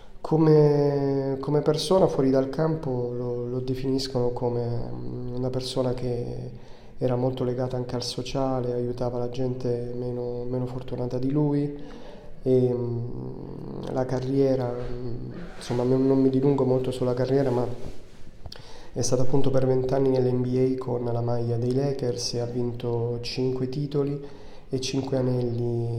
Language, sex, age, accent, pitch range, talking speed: Italian, male, 30-49, native, 120-130 Hz, 130 wpm